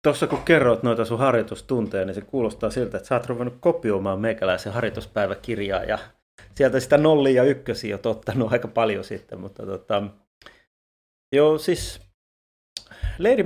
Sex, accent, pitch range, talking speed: male, native, 100-125 Hz, 145 wpm